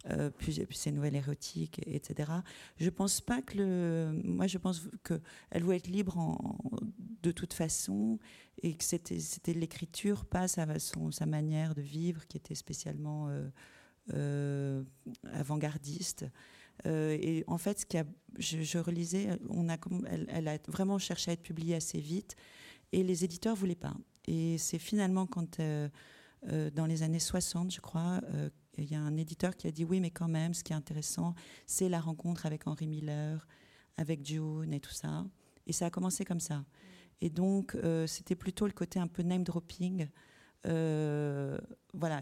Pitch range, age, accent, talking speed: 150-185 Hz, 40-59, French, 180 wpm